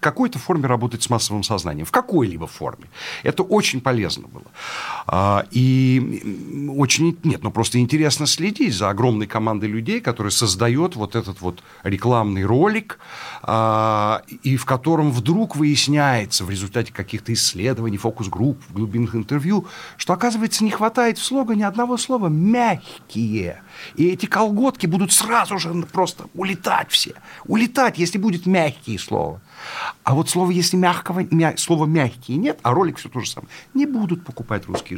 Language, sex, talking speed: Russian, male, 150 wpm